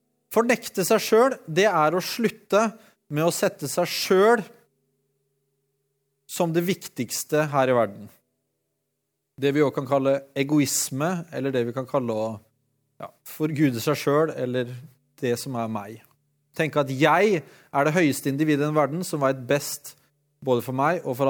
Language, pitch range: English, 135-180 Hz